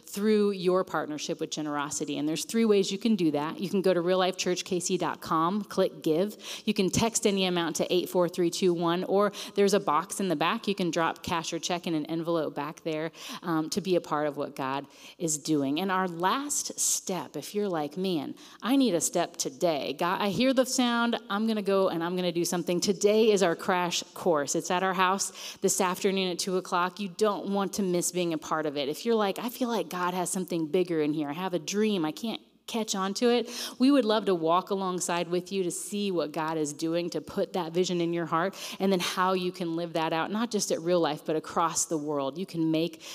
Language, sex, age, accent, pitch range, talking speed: English, female, 30-49, American, 160-195 Hz, 235 wpm